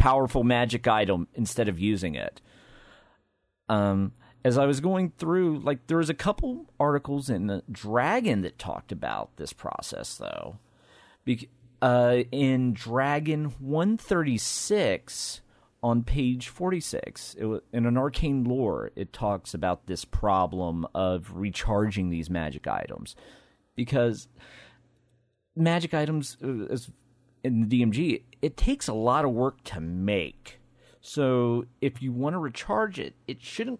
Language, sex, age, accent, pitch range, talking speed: English, male, 40-59, American, 115-145 Hz, 135 wpm